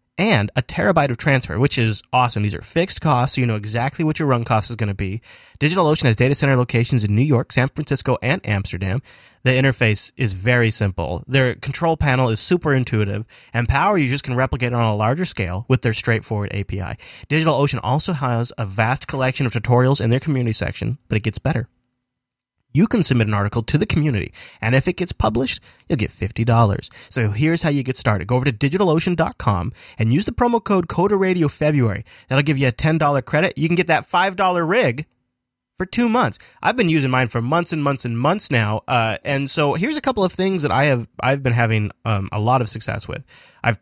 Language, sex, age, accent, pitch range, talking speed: English, male, 30-49, American, 115-150 Hz, 215 wpm